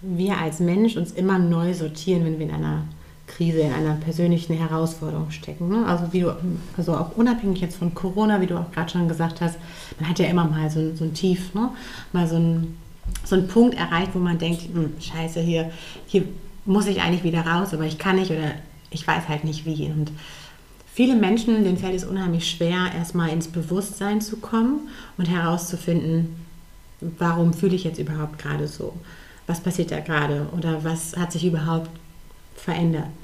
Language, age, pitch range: German, 30-49, 160-180 Hz